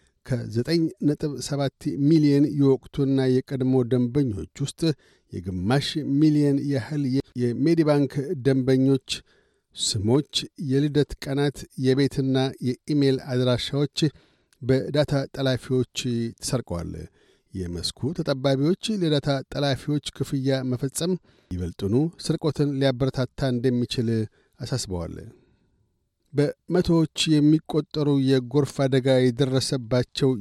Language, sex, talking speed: Amharic, male, 65 wpm